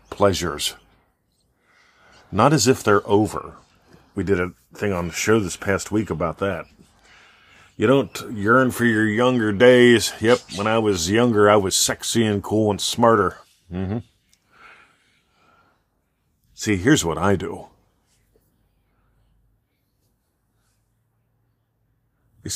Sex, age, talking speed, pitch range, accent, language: male, 40-59, 115 wpm, 95-115 Hz, American, English